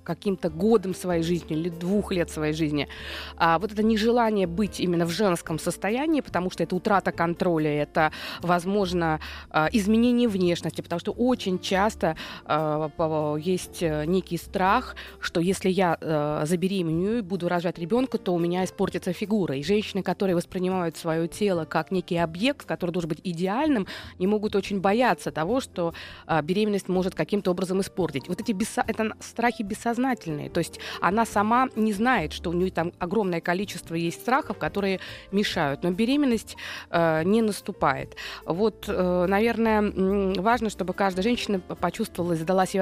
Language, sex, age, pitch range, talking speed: Russian, female, 20-39, 170-220 Hz, 155 wpm